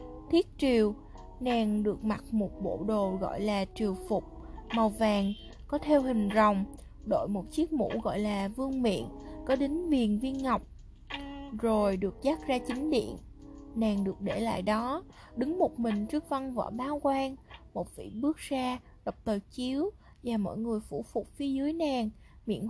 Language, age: Vietnamese, 20-39